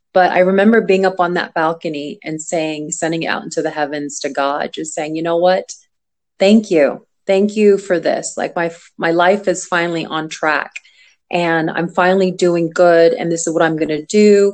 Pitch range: 170-205 Hz